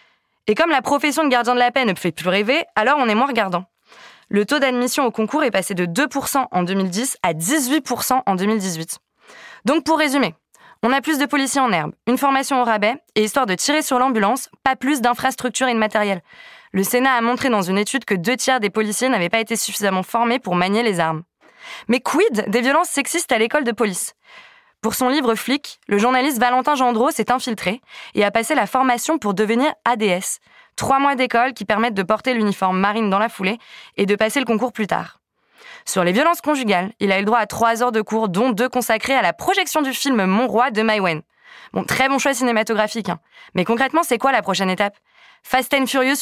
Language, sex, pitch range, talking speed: French, female, 210-270 Hz, 215 wpm